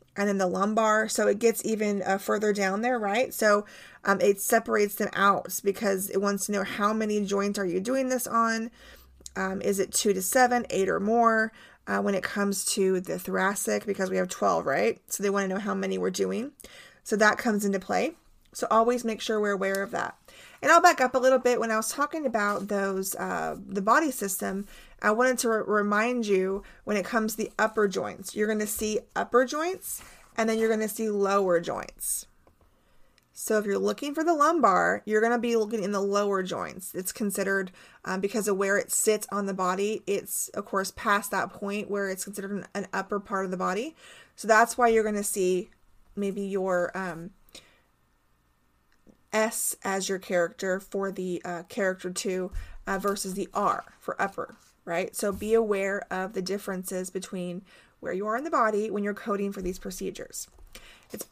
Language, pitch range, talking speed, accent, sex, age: English, 195-230 Hz, 205 wpm, American, female, 30-49